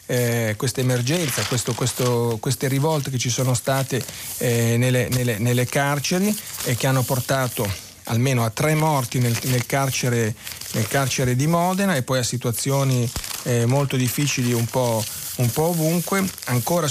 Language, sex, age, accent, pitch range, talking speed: Italian, male, 40-59, native, 120-140 Hz, 150 wpm